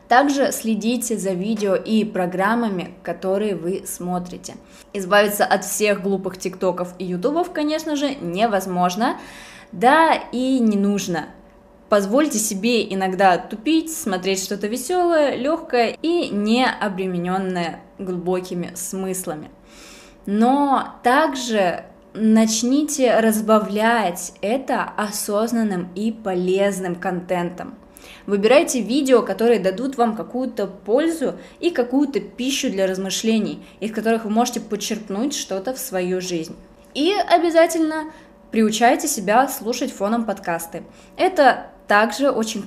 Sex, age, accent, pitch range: female, 20-39, native, 190-250 Hz